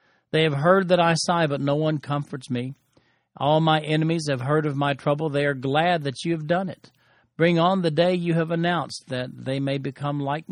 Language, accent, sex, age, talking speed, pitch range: English, American, male, 50-69, 220 wpm, 125-160 Hz